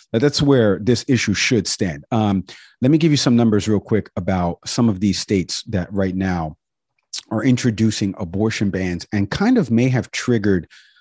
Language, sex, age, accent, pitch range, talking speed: English, male, 40-59, American, 95-120 Hz, 180 wpm